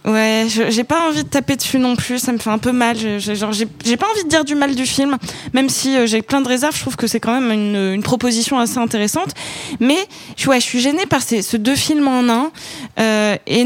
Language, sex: French, female